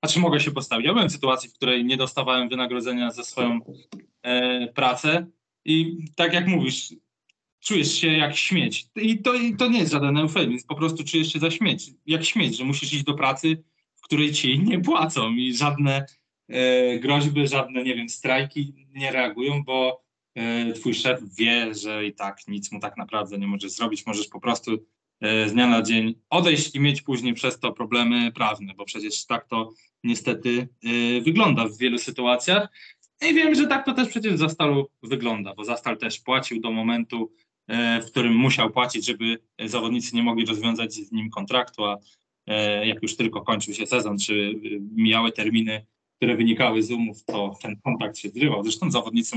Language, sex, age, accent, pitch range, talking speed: Polish, male, 20-39, native, 115-150 Hz, 180 wpm